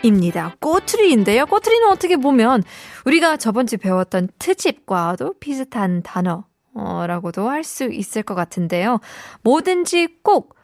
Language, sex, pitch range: Korean, female, 185-300 Hz